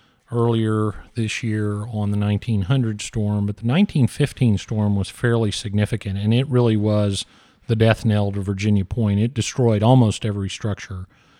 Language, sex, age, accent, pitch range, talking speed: English, male, 40-59, American, 105-115 Hz, 155 wpm